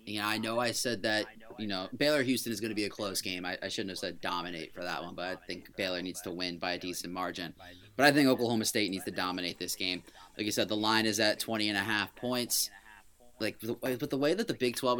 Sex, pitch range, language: male, 105-125 Hz, English